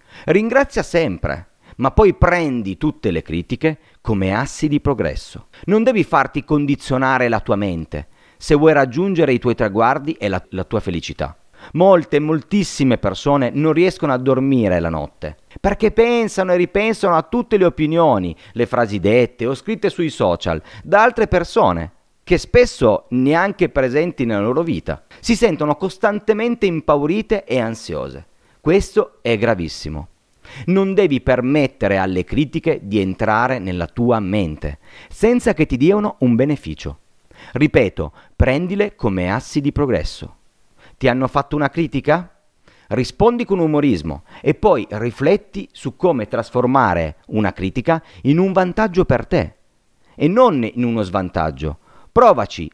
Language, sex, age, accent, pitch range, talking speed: Italian, male, 40-59, native, 100-170 Hz, 140 wpm